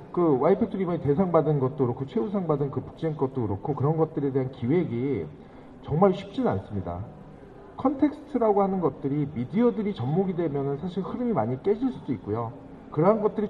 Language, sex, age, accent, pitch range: Korean, male, 50-69, native, 130-200 Hz